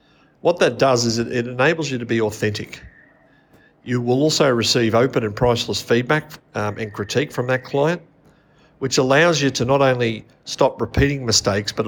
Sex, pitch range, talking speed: male, 105-130 Hz, 170 wpm